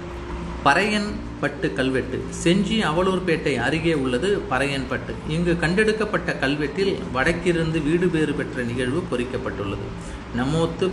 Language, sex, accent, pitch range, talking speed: Tamil, male, native, 125-165 Hz, 95 wpm